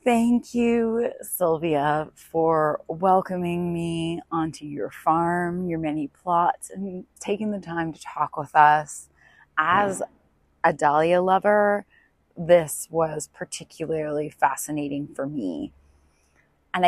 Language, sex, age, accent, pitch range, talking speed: English, female, 30-49, American, 150-180 Hz, 110 wpm